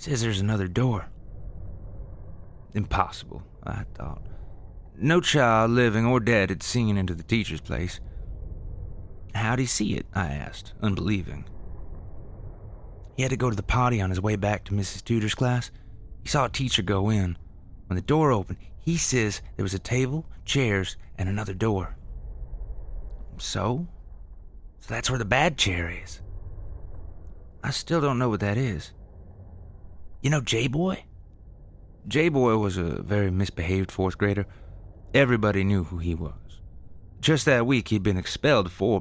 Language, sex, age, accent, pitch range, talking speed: English, male, 30-49, American, 90-115 Hz, 150 wpm